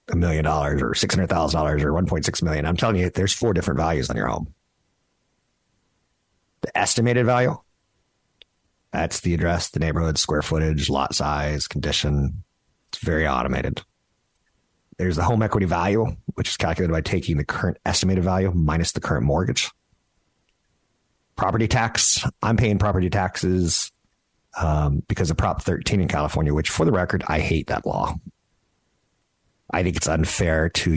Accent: American